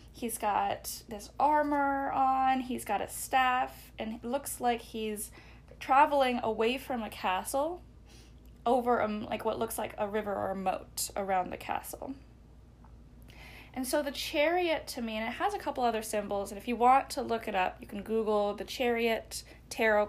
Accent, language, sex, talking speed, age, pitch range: American, English, female, 180 wpm, 10-29, 205-255 Hz